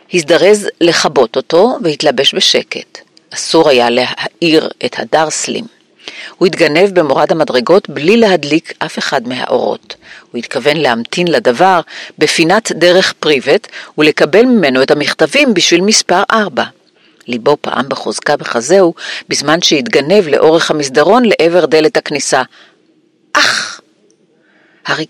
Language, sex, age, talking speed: Hebrew, female, 50-69, 110 wpm